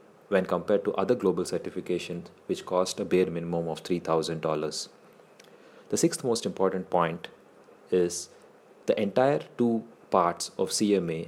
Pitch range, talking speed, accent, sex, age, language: 90-110 Hz, 135 wpm, Indian, male, 30-49, English